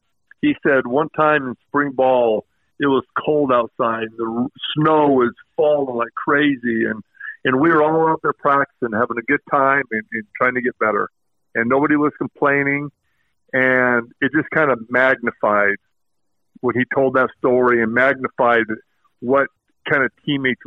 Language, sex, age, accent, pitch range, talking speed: English, male, 50-69, American, 120-150 Hz, 165 wpm